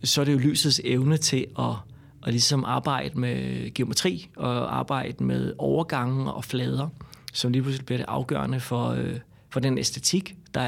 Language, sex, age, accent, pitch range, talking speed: Danish, male, 30-49, native, 120-135 Hz, 175 wpm